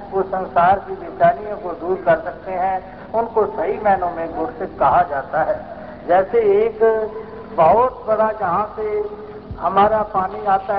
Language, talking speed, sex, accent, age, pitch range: Hindi, 140 wpm, male, native, 60-79, 195-230 Hz